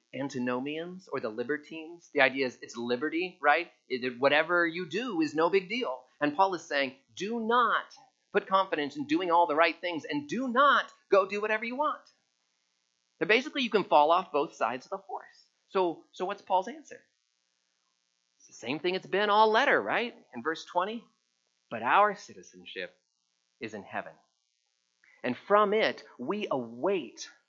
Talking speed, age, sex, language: 170 wpm, 40-59, male, English